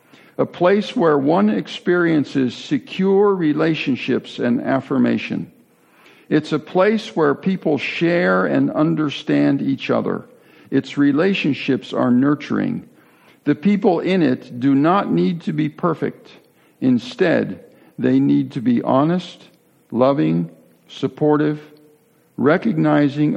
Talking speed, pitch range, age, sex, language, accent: 110 wpm, 125-155 Hz, 60-79, male, English, American